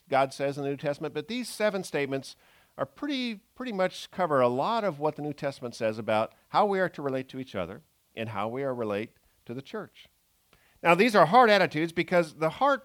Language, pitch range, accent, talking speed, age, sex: English, 120-160 Hz, American, 225 wpm, 50-69, male